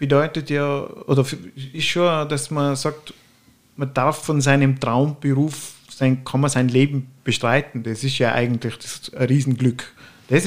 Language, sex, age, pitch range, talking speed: German, male, 50-69, 130-155 Hz, 160 wpm